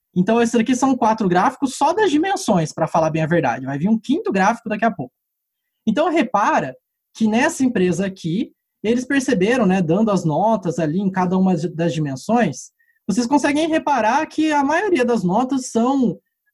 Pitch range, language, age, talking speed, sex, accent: 190-260 Hz, Portuguese, 20-39, 180 wpm, male, Brazilian